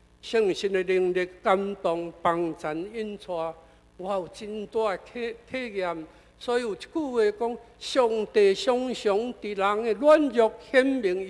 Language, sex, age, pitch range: Chinese, male, 60-79, 130-220 Hz